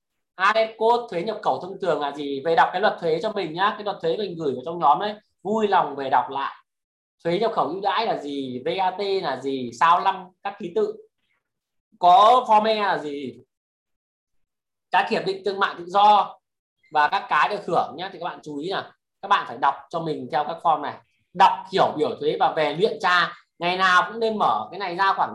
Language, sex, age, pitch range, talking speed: Vietnamese, male, 20-39, 170-220 Hz, 225 wpm